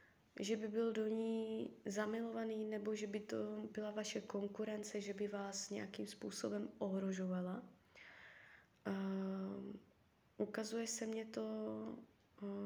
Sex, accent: female, native